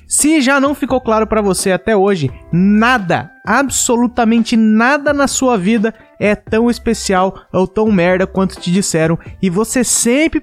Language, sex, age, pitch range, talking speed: Portuguese, male, 20-39, 155-220 Hz, 155 wpm